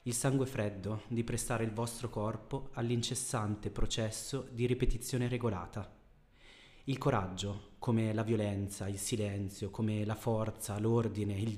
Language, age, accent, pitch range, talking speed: Italian, 30-49, native, 105-120 Hz, 130 wpm